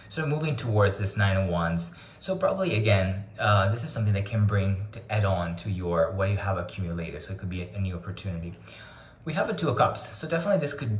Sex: male